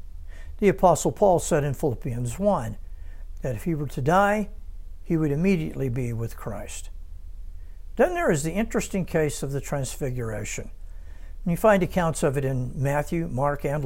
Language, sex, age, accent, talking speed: English, male, 60-79, American, 160 wpm